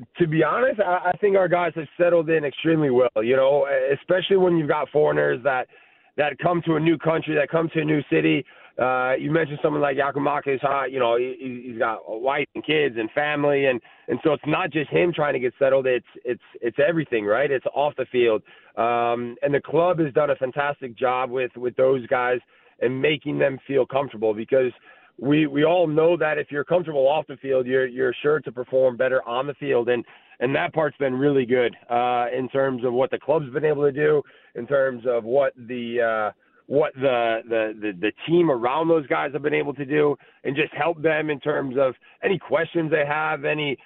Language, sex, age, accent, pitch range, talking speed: English, male, 30-49, American, 130-160 Hz, 215 wpm